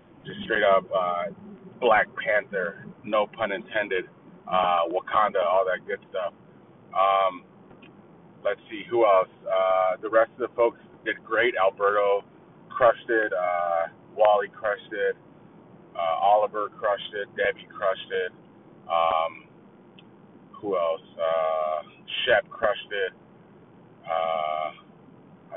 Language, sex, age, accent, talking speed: English, male, 30-49, American, 115 wpm